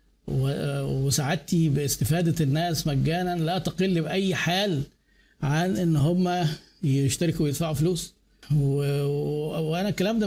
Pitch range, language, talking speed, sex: 155-190 Hz, Arabic, 110 wpm, male